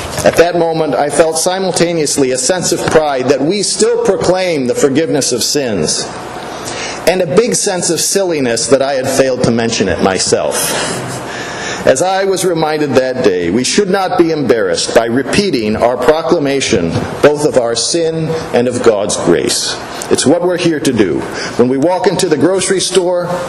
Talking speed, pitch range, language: 175 wpm, 135-175 Hz, English